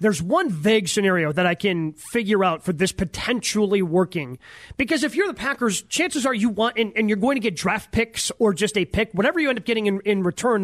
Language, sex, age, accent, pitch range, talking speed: English, male, 30-49, American, 190-240 Hz, 235 wpm